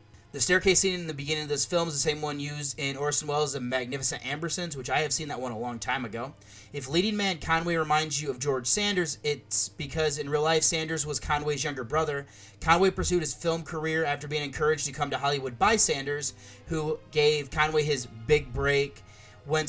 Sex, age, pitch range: male, 30-49, 135-155 Hz